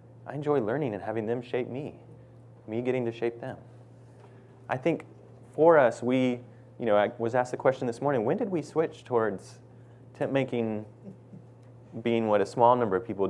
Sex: male